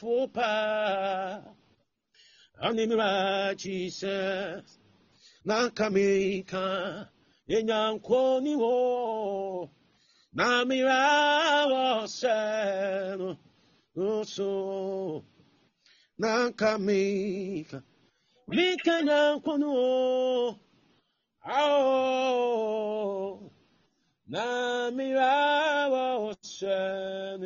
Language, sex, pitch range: Japanese, male, 195-265 Hz